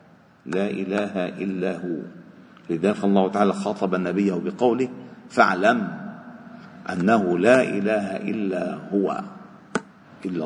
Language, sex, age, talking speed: Arabic, male, 50-69, 100 wpm